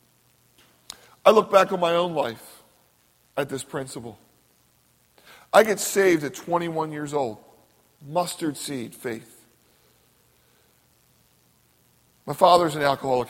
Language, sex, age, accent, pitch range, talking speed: English, male, 40-59, American, 140-185 Hz, 110 wpm